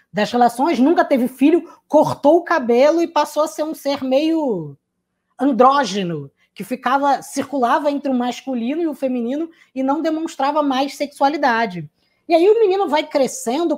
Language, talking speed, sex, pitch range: Portuguese, 155 wpm, female, 225-300 Hz